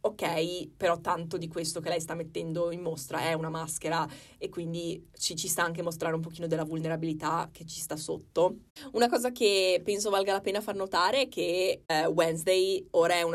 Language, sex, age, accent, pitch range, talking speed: Italian, female, 20-39, native, 165-180 Hz, 200 wpm